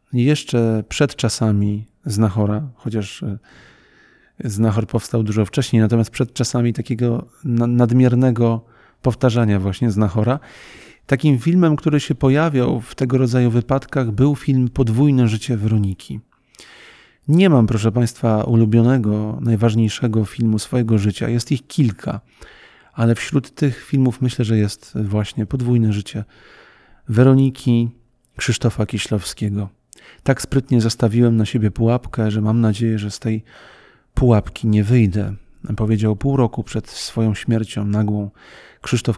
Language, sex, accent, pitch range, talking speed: Polish, male, native, 110-125 Hz, 120 wpm